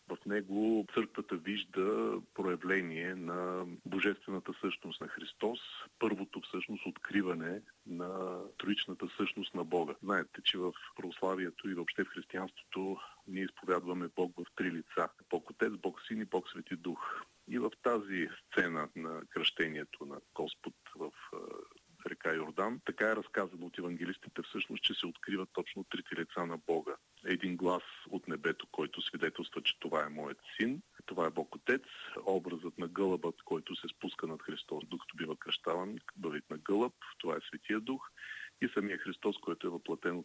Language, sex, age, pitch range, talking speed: Bulgarian, male, 40-59, 85-100 Hz, 155 wpm